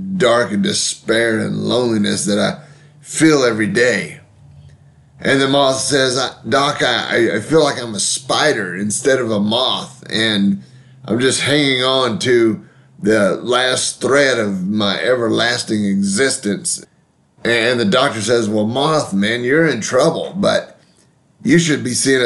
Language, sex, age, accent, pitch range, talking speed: English, male, 30-49, American, 105-140 Hz, 150 wpm